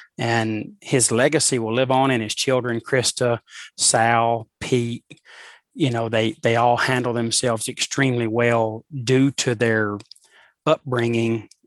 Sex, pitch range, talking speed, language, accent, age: male, 115-135 Hz, 130 wpm, English, American, 30-49